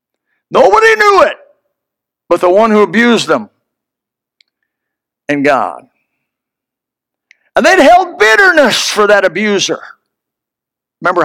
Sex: male